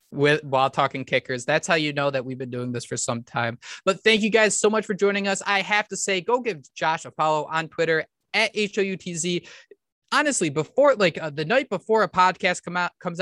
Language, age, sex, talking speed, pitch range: English, 20-39, male, 225 wpm, 150-190 Hz